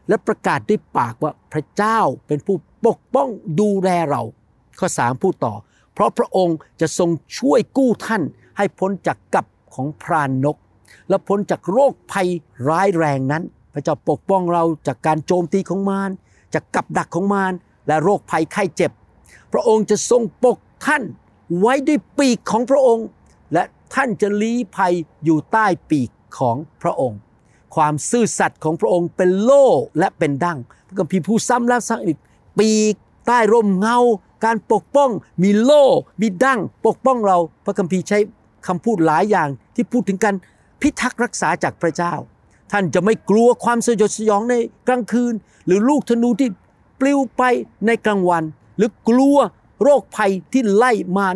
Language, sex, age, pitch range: Thai, male, 60-79, 160-230 Hz